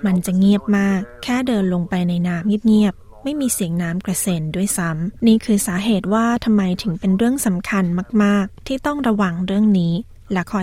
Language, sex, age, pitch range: Thai, female, 20-39, 190-220 Hz